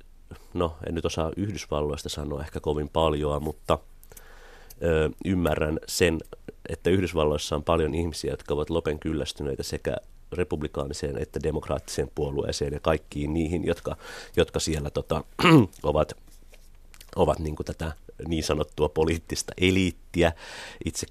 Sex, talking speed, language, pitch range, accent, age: male, 120 wpm, Finnish, 75-90 Hz, native, 30-49